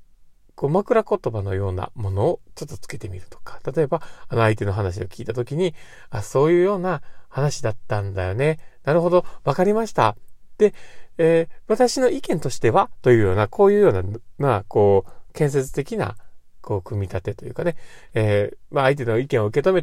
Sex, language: male, Japanese